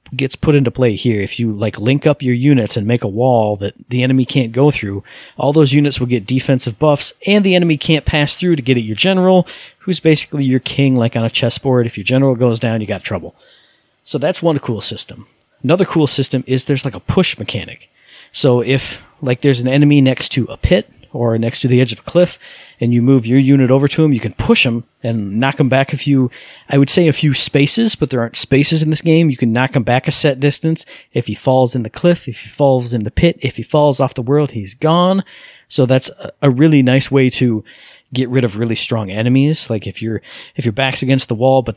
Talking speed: 245 wpm